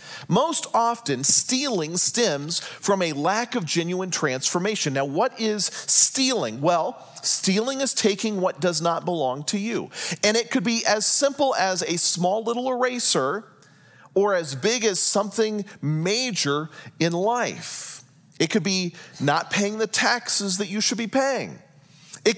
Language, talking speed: English, 150 wpm